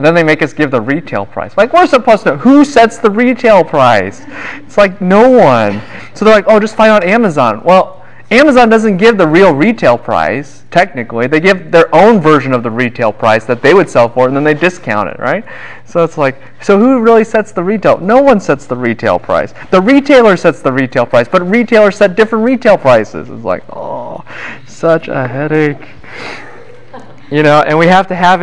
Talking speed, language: 210 wpm, English